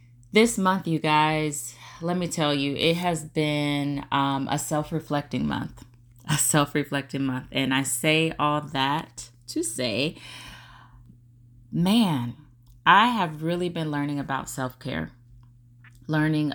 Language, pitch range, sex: English, 130-155 Hz, female